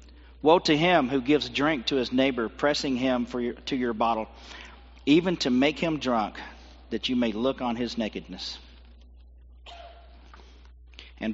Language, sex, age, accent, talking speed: English, male, 40-59, American, 145 wpm